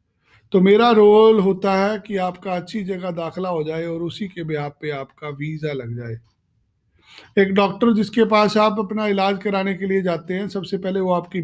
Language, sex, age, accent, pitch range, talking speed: Hindi, male, 50-69, native, 160-200 Hz, 195 wpm